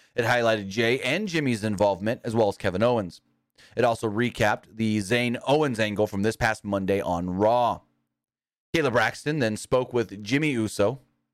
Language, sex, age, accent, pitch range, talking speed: English, male, 30-49, American, 110-150 Hz, 165 wpm